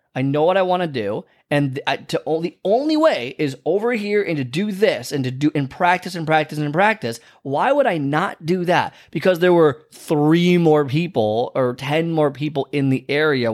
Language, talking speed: English, 210 wpm